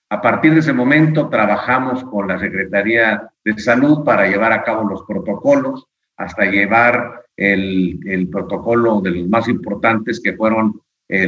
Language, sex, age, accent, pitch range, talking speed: Spanish, male, 50-69, Mexican, 105-135 Hz, 155 wpm